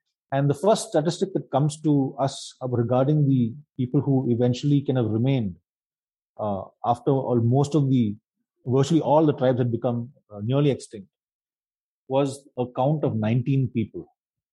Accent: native